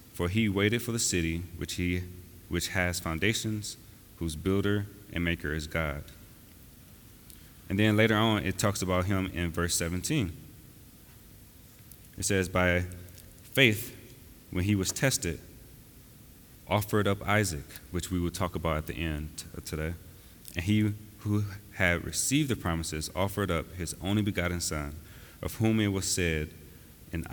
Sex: male